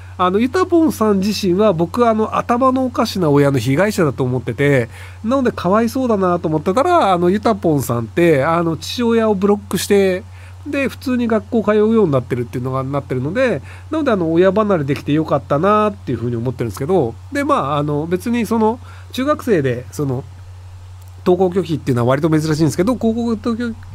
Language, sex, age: Japanese, male, 40-59